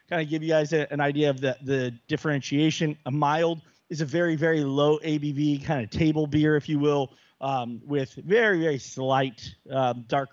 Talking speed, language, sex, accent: 200 wpm, English, male, American